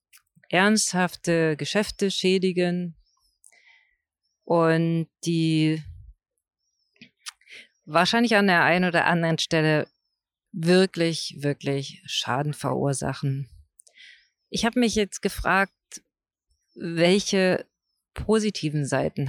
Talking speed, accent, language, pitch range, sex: 75 wpm, German, German, 150-190 Hz, female